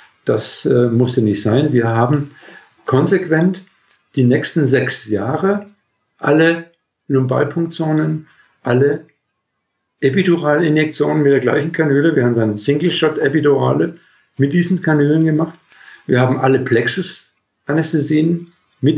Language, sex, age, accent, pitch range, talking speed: German, male, 50-69, German, 125-150 Hz, 105 wpm